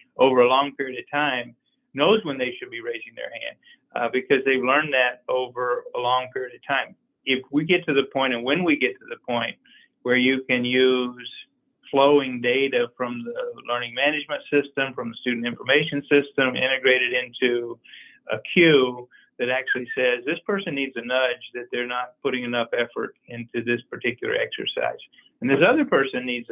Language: English